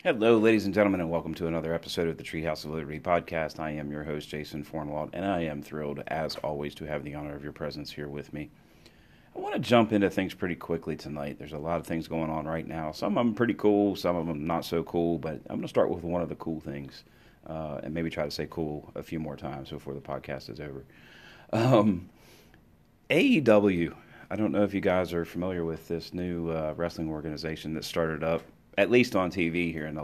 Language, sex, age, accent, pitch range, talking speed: English, male, 40-59, American, 75-90 Hz, 240 wpm